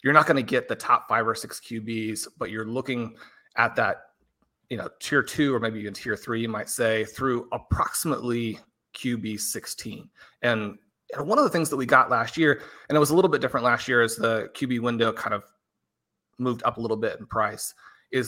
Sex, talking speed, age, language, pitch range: male, 215 wpm, 30-49, English, 110-130 Hz